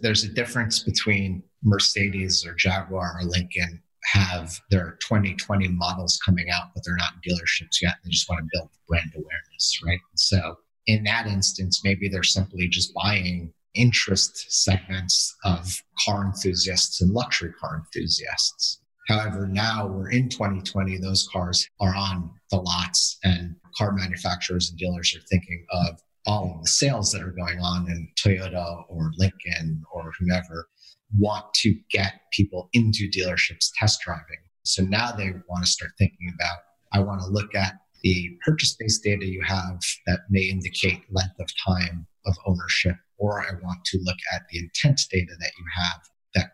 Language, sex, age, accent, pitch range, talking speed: English, male, 30-49, American, 90-100 Hz, 165 wpm